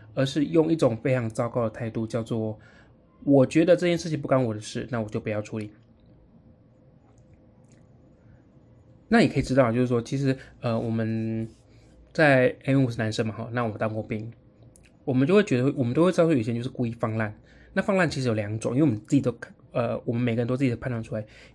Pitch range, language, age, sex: 110-135 Hz, Chinese, 20-39, male